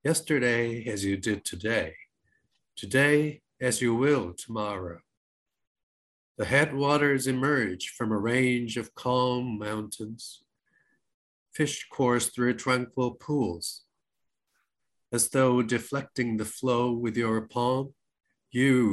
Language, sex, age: English, male, 50-69